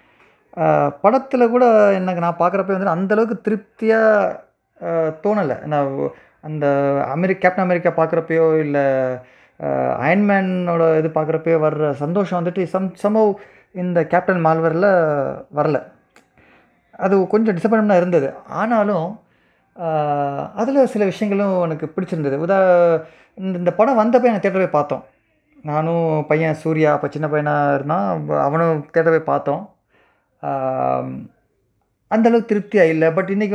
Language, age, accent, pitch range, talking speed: Tamil, 20-39, native, 155-200 Hz, 105 wpm